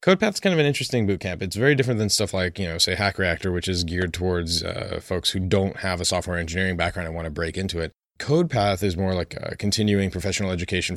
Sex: male